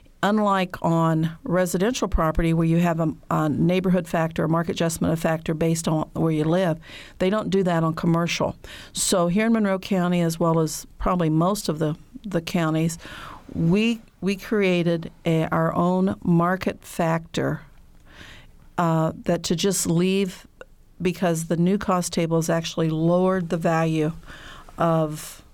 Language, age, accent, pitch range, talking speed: English, 50-69, American, 165-185 Hz, 150 wpm